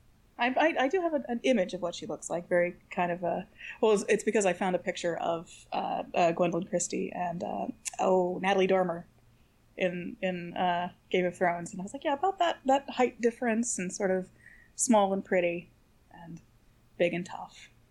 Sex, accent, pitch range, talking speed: female, American, 175-210 Hz, 200 wpm